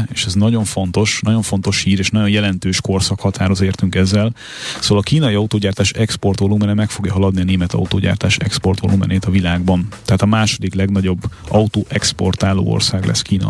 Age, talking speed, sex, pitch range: 30-49, 155 wpm, male, 95-105 Hz